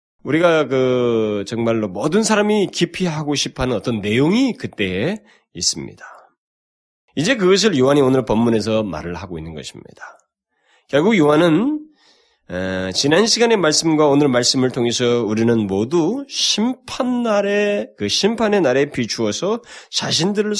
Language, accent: Korean, native